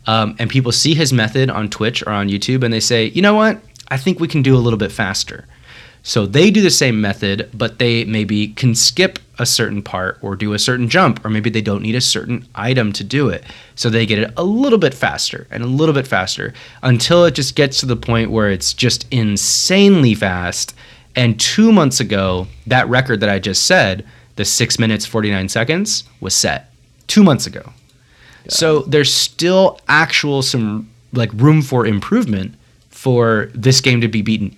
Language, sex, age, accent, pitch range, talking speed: English, male, 20-39, American, 110-135 Hz, 200 wpm